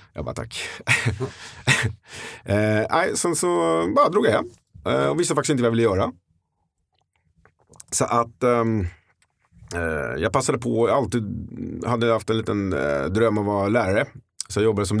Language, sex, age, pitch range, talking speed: Swedish, male, 30-49, 95-120 Hz, 160 wpm